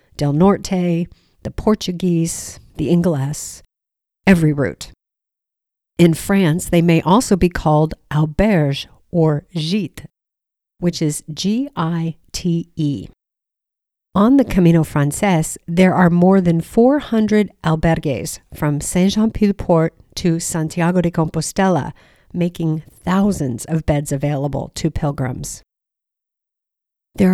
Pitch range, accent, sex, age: 160-195 Hz, American, female, 50-69